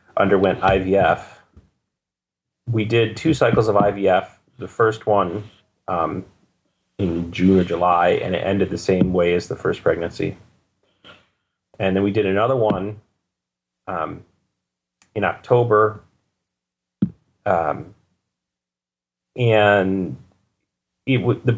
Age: 30-49